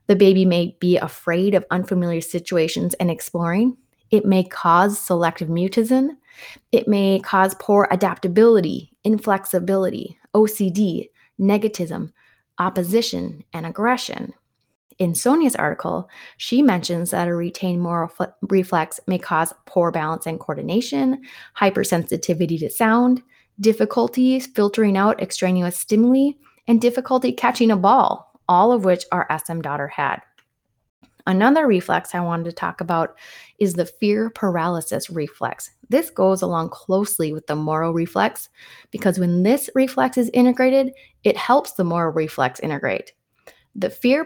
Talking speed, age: 130 wpm, 20-39